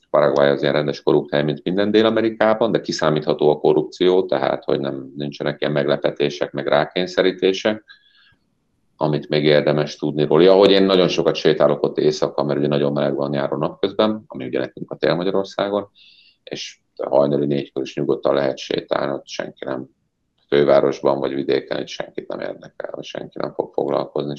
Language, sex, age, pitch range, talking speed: Hungarian, male, 40-59, 70-100 Hz, 165 wpm